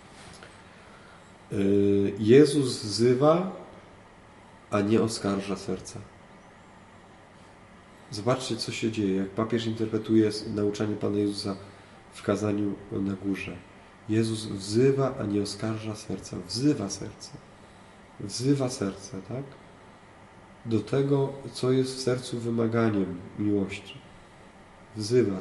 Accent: native